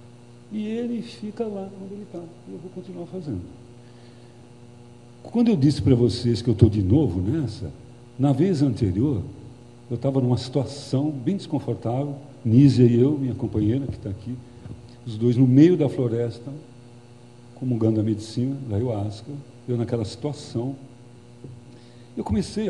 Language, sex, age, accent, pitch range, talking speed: Portuguese, male, 60-79, Brazilian, 120-135 Hz, 150 wpm